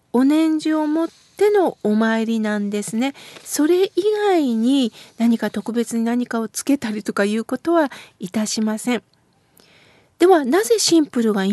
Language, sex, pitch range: Japanese, female, 240-330 Hz